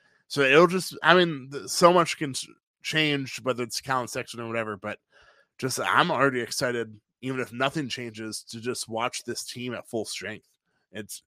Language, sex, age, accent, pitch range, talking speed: English, male, 20-39, American, 110-135 Hz, 165 wpm